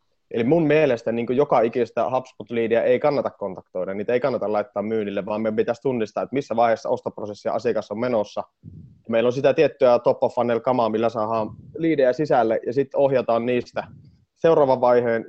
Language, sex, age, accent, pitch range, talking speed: Finnish, male, 30-49, native, 110-135 Hz, 165 wpm